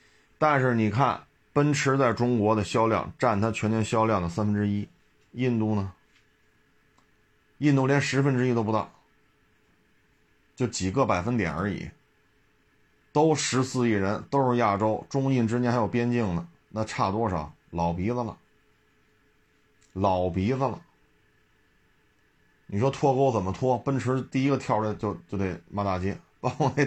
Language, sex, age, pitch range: Chinese, male, 30-49, 105-140 Hz